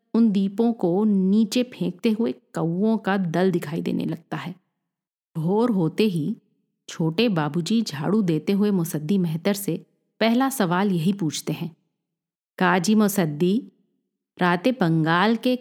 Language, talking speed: Hindi, 125 wpm